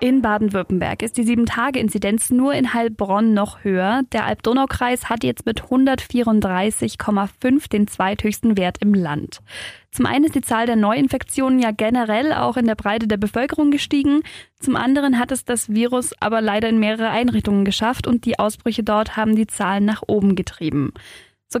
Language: German